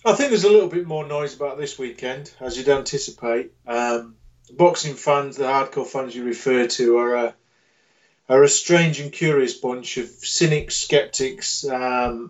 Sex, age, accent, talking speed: male, 40-59, British, 170 wpm